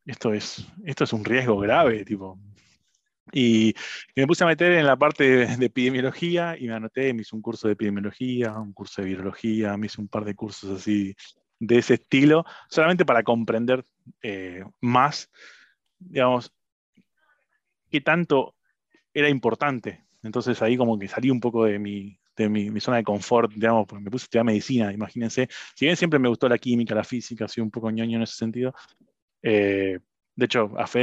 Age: 20-39